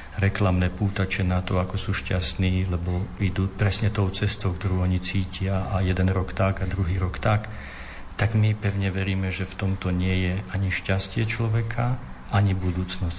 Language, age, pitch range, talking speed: Slovak, 50-69, 90-105 Hz, 170 wpm